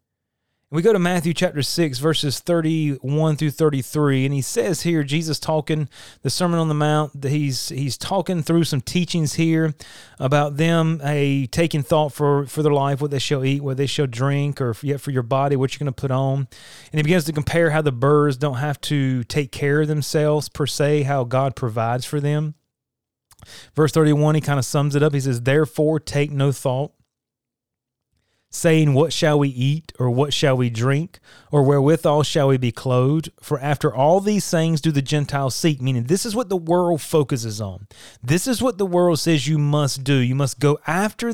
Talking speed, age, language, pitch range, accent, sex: 200 wpm, 30-49, English, 135-165 Hz, American, male